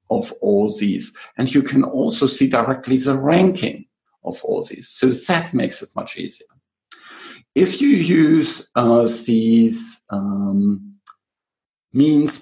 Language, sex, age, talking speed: English, male, 50-69, 130 wpm